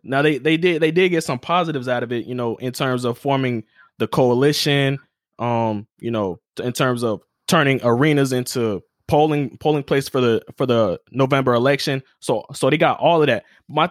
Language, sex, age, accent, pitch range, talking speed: English, male, 20-39, American, 125-155 Hz, 200 wpm